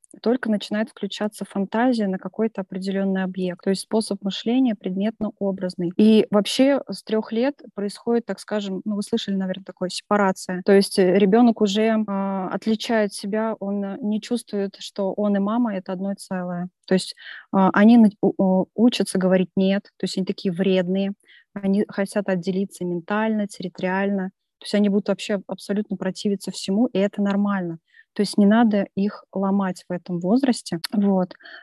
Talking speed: 150 wpm